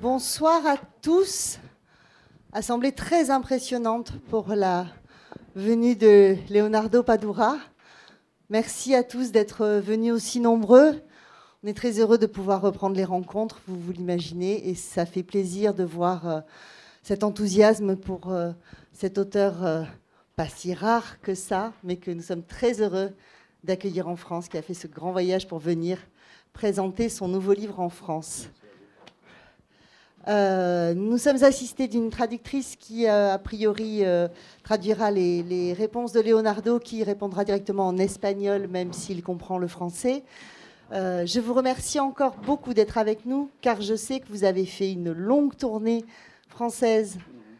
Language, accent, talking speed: French, French, 150 wpm